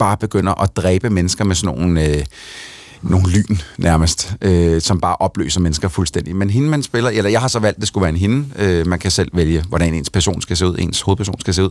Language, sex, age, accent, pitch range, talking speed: Danish, male, 30-49, native, 90-105 Hz, 245 wpm